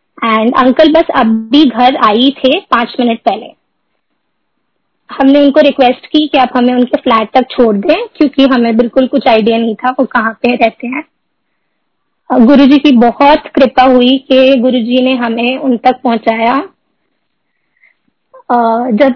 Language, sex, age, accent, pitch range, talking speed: Hindi, female, 20-39, native, 235-280 Hz, 145 wpm